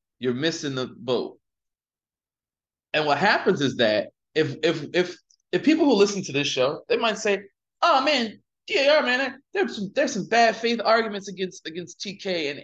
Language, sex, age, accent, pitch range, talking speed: English, male, 20-39, American, 130-215 Hz, 175 wpm